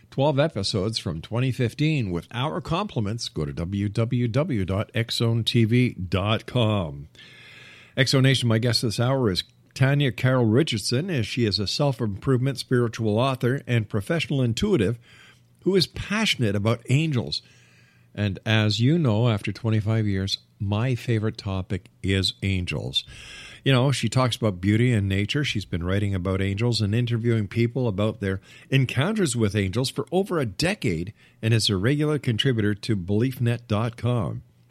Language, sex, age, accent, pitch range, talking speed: English, male, 50-69, American, 105-130 Hz, 135 wpm